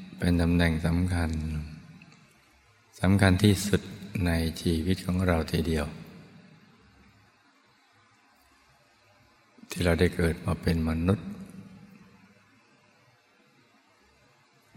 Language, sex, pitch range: Thai, male, 80-95 Hz